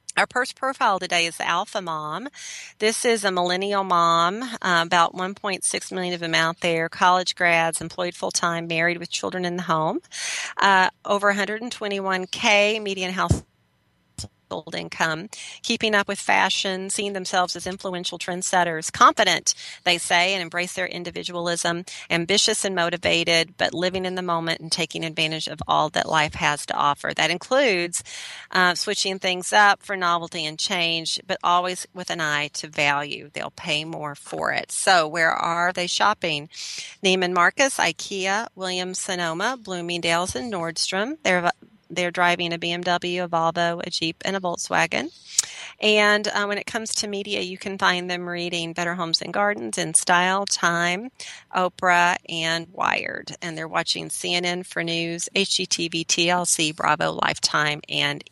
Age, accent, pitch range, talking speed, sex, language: 40-59, American, 170-200 Hz, 155 wpm, female, English